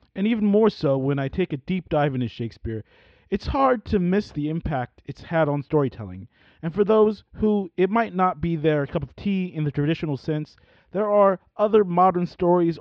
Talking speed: 200 wpm